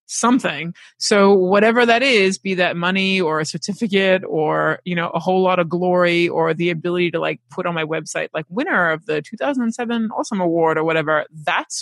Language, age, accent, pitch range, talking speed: English, 20-39, American, 175-225 Hz, 195 wpm